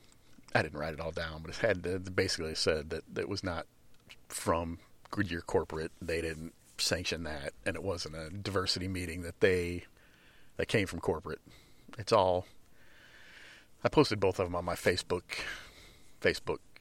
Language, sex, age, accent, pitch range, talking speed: English, male, 40-59, American, 85-100 Hz, 160 wpm